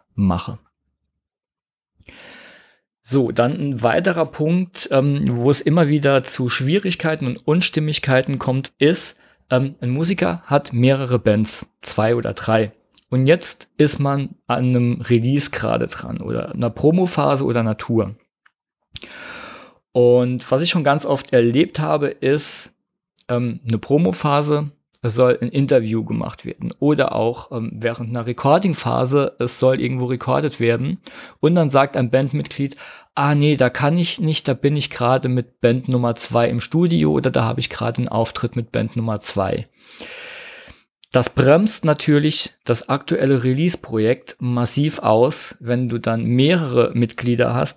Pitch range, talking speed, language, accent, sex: 120-150 Hz, 145 wpm, German, German, male